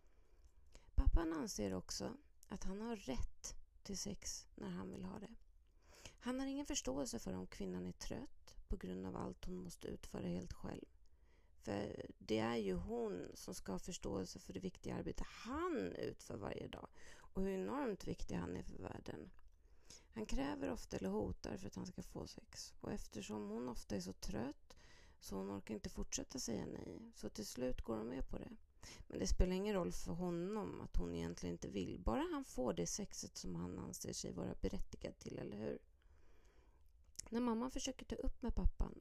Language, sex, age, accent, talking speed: Swedish, female, 30-49, native, 190 wpm